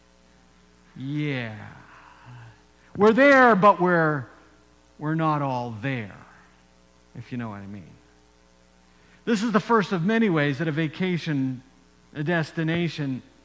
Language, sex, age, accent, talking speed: English, male, 50-69, American, 120 wpm